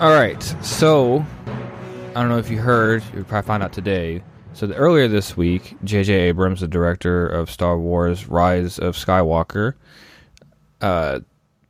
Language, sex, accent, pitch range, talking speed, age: English, male, American, 90-115 Hz, 145 wpm, 20-39